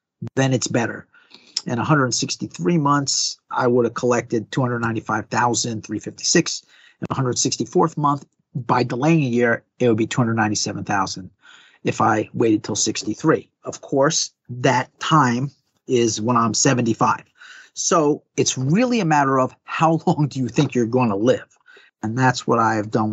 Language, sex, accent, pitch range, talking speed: English, male, American, 115-145 Hz, 145 wpm